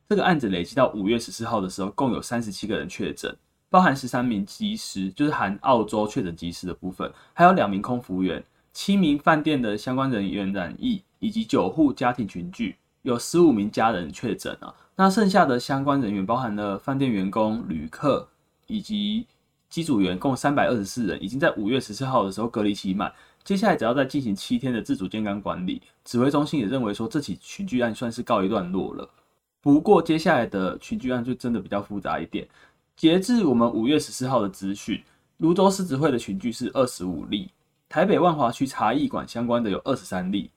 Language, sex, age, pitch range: Chinese, male, 20-39, 105-165 Hz